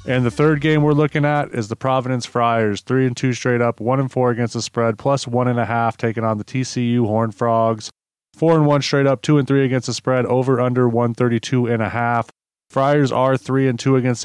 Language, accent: English, American